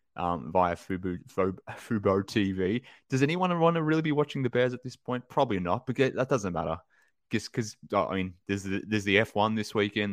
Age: 20-39